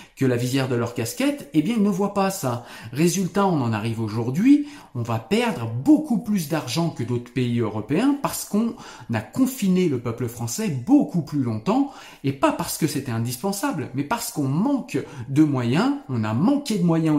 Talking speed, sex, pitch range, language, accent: 190 wpm, male, 125-200 Hz, French, French